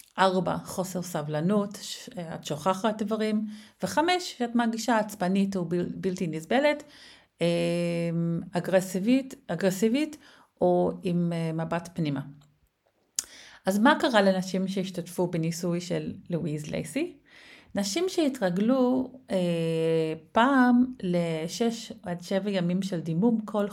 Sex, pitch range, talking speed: female, 175-225 Hz, 95 wpm